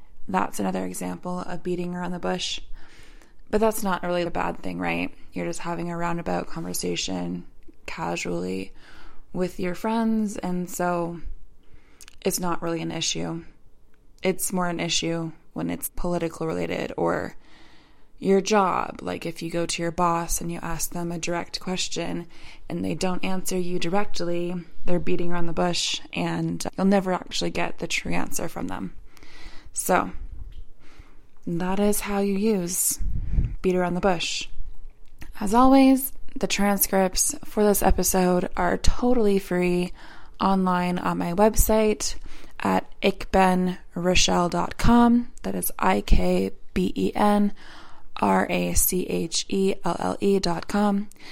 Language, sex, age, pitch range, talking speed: English, female, 20-39, 165-195 Hz, 145 wpm